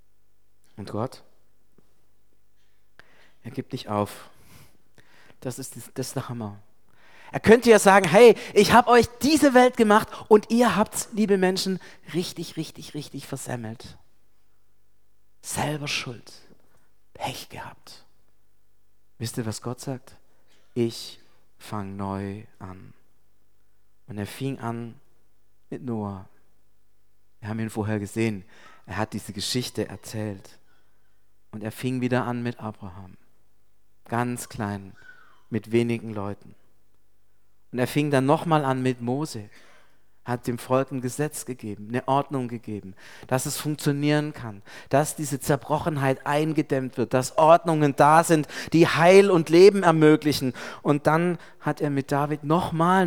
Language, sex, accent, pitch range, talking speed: German, male, German, 110-160 Hz, 130 wpm